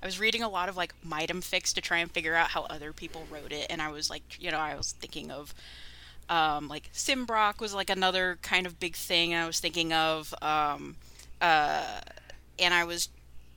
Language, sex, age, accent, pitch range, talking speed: English, female, 20-39, American, 150-190 Hz, 210 wpm